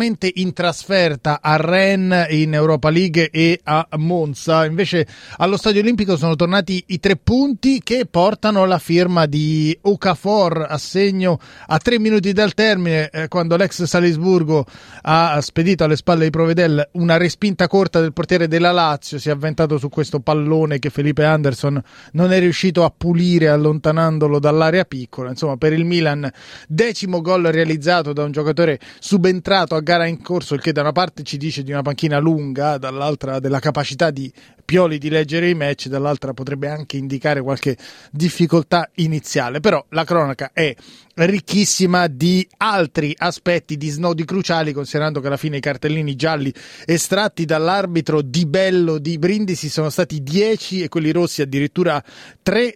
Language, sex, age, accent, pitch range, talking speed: Italian, male, 30-49, native, 150-180 Hz, 160 wpm